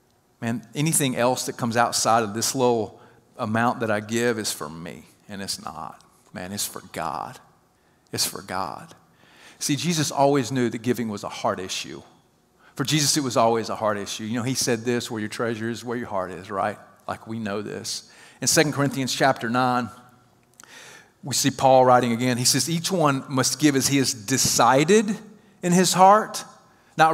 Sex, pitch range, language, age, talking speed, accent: male, 120-160 Hz, English, 40-59, 190 wpm, American